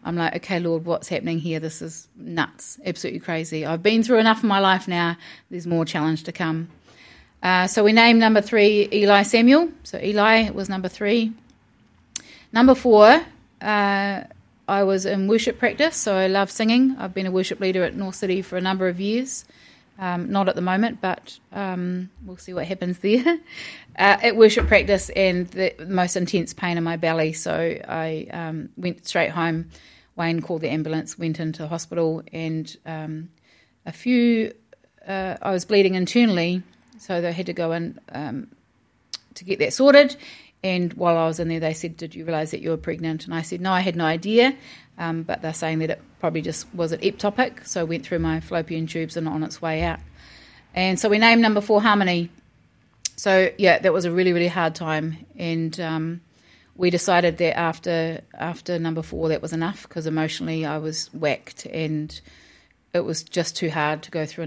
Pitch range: 160-195 Hz